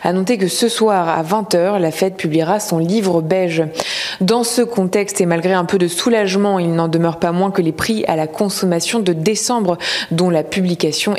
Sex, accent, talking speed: female, French, 205 wpm